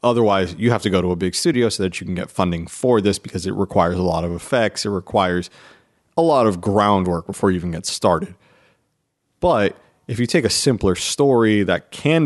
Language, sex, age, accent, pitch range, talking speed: English, male, 30-49, American, 95-115 Hz, 215 wpm